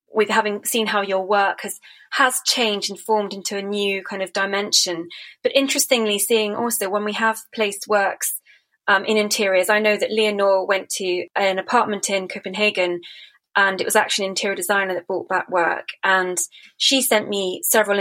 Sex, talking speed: female, 185 wpm